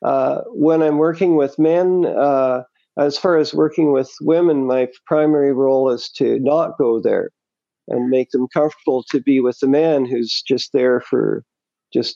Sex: male